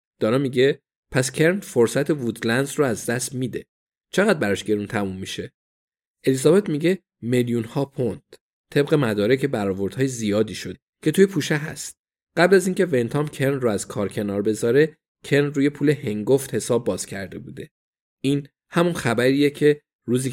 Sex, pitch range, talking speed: male, 110-150 Hz, 155 wpm